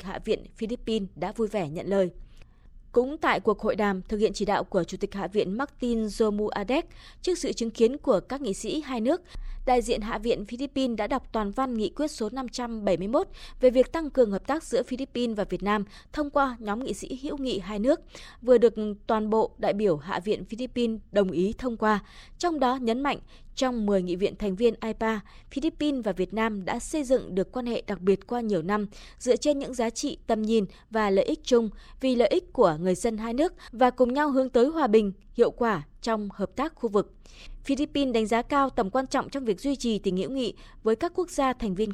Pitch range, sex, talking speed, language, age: 205-265 Hz, female, 230 wpm, Vietnamese, 20-39